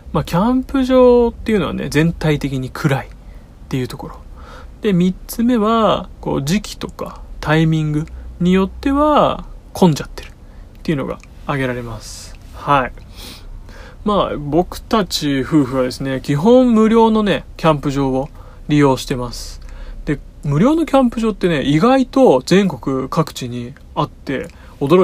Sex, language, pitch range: male, Japanese, 130-200 Hz